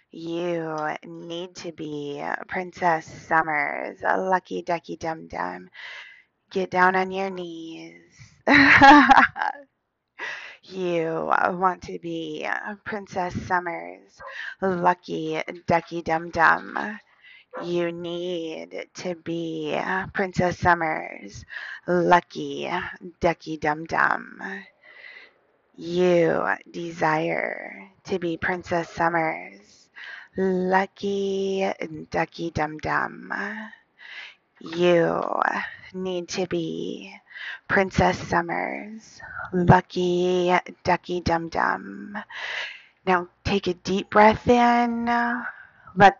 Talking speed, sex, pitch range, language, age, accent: 75 wpm, female, 165-195 Hz, English, 20-39, American